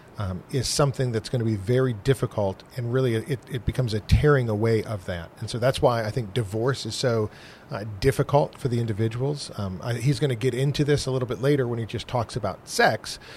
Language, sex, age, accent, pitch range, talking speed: English, male, 40-59, American, 110-130 Hz, 225 wpm